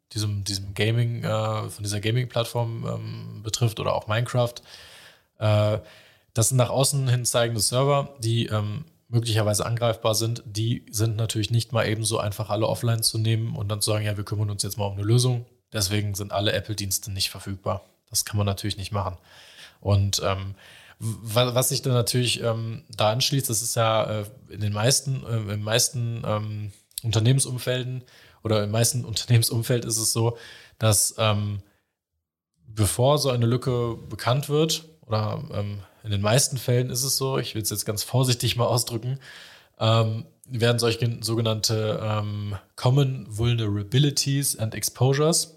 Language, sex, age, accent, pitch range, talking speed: German, male, 20-39, German, 105-125 Hz, 170 wpm